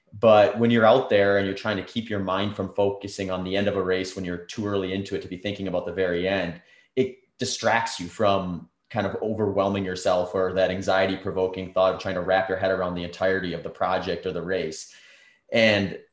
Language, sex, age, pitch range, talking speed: English, male, 30-49, 95-110 Hz, 230 wpm